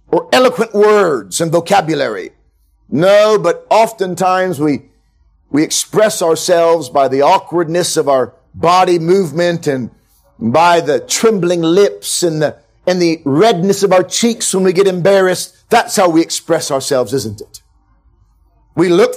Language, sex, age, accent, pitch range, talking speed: English, male, 50-69, American, 130-190 Hz, 140 wpm